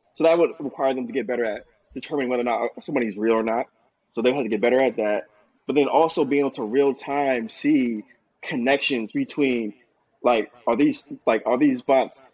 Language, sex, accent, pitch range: English, male, American, 125-150 Hz